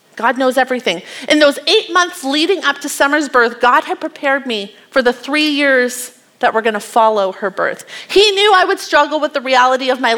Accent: American